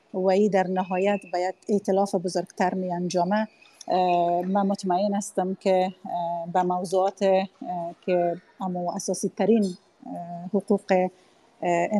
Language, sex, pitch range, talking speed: Persian, female, 180-210 Hz, 110 wpm